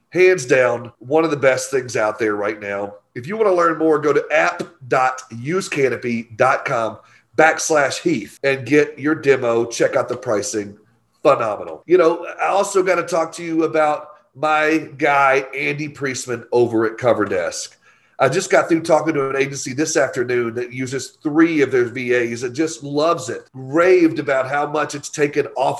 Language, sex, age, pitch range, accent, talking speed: English, male, 40-59, 135-170 Hz, American, 175 wpm